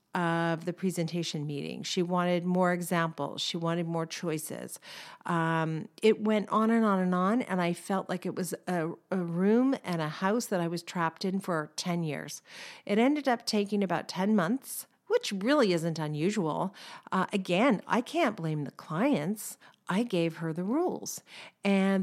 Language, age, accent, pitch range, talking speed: English, 50-69, American, 160-195 Hz, 175 wpm